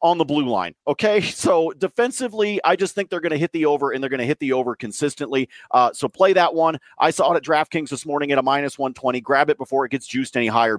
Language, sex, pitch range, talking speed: English, male, 140-180 Hz, 265 wpm